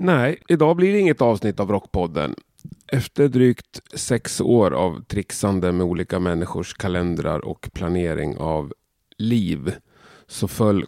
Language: Swedish